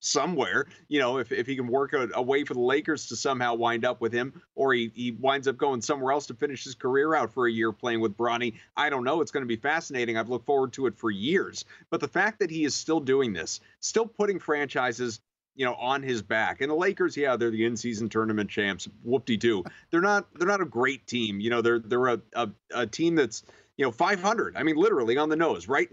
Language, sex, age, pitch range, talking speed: English, male, 30-49, 120-160 Hz, 250 wpm